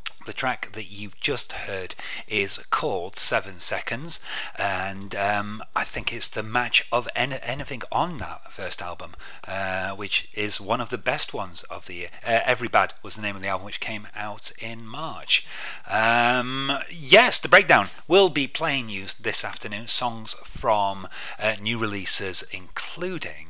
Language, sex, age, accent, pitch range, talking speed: English, male, 30-49, British, 95-120 Hz, 165 wpm